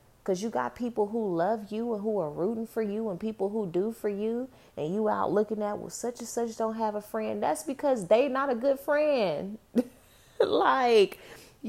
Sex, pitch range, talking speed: female, 155-215 Hz, 205 wpm